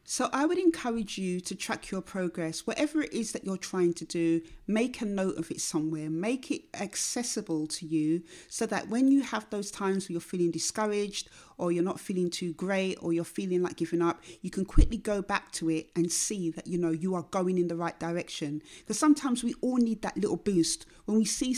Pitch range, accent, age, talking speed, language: 170-210 Hz, British, 40-59, 225 wpm, English